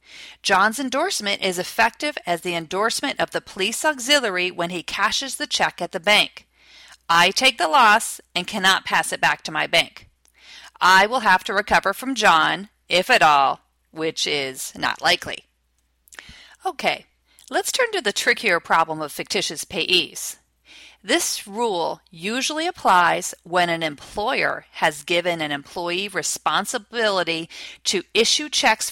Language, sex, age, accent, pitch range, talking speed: English, female, 40-59, American, 175-270 Hz, 145 wpm